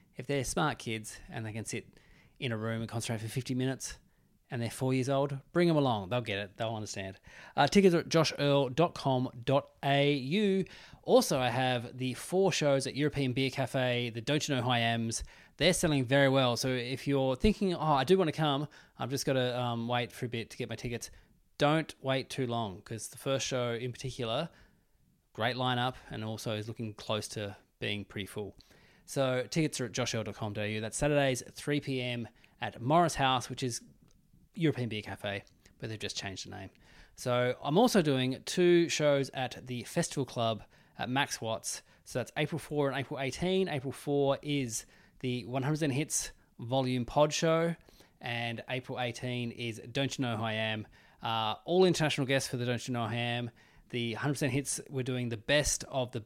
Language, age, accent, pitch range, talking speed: English, 20-39, Australian, 115-145 Hz, 195 wpm